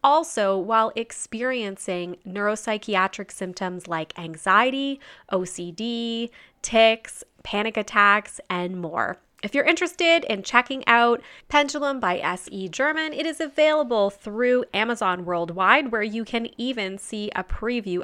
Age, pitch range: 20-39, 185-245 Hz